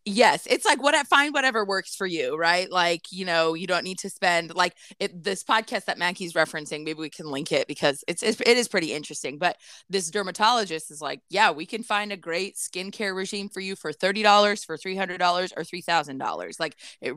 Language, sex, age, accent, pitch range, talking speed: English, female, 20-39, American, 160-195 Hz, 215 wpm